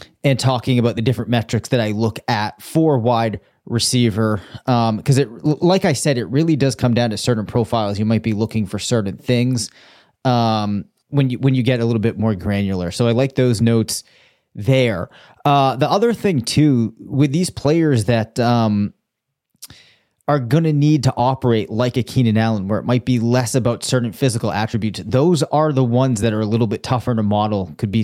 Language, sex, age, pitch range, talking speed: English, male, 30-49, 110-130 Hz, 200 wpm